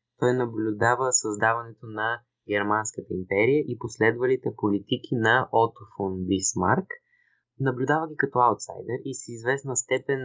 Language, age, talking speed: Bulgarian, 20-39, 115 wpm